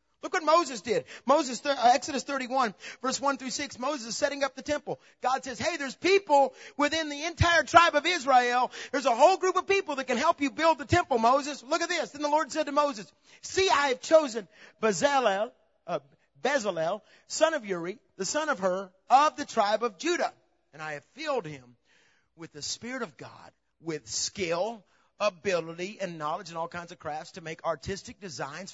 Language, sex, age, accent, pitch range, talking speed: English, male, 40-59, American, 190-315 Hz, 200 wpm